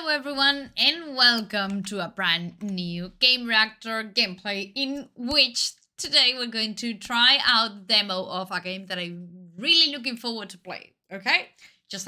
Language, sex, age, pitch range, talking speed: Danish, female, 20-39, 190-245 Hz, 160 wpm